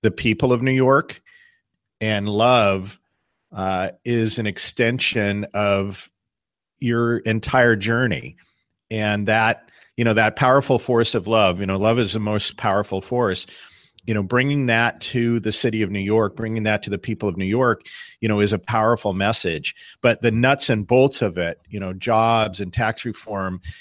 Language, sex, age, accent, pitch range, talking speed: English, male, 40-59, American, 100-120 Hz, 175 wpm